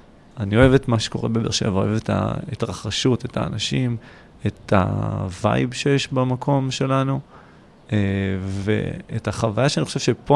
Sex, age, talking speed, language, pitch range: male, 30-49, 135 wpm, Hebrew, 105-135 Hz